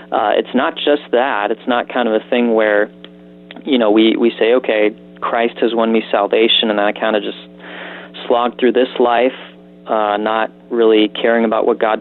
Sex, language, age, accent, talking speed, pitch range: male, English, 30-49, American, 195 wpm, 105-120 Hz